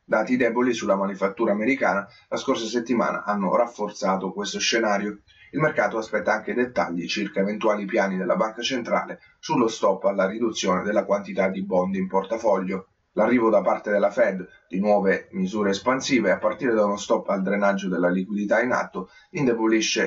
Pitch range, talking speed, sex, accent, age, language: 95-110 Hz, 160 wpm, male, native, 30-49, Italian